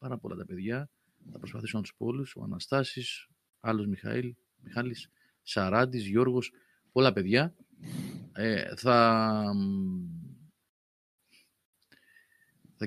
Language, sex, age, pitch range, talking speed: Greek, male, 30-49, 100-135 Hz, 105 wpm